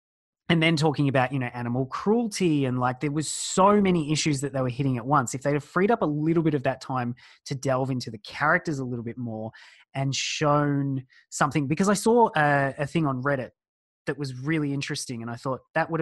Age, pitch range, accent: 20-39, 130-160 Hz, Australian